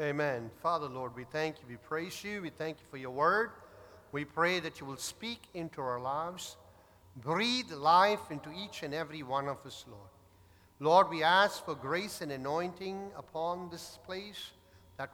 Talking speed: 180 wpm